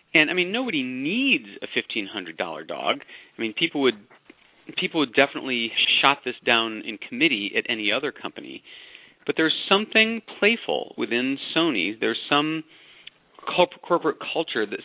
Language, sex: English, male